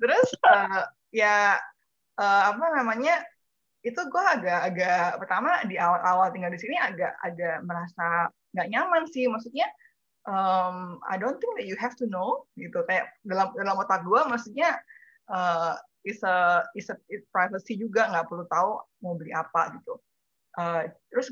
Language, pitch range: Indonesian, 175-225 Hz